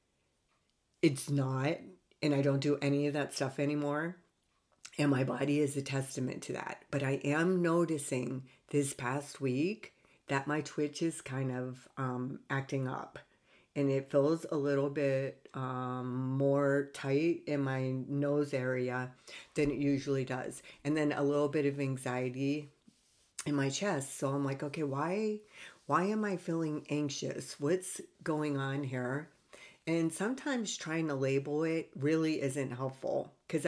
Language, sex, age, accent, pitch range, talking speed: English, female, 50-69, American, 135-155 Hz, 155 wpm